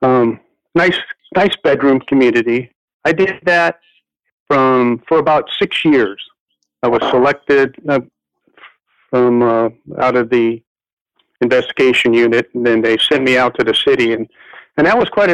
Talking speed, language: 150 wpm, English